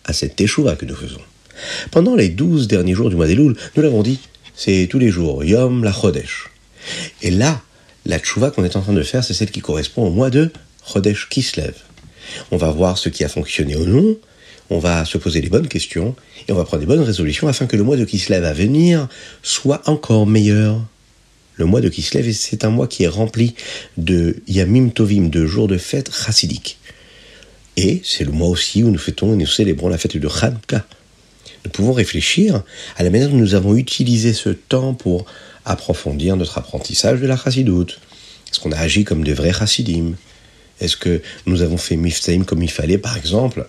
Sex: male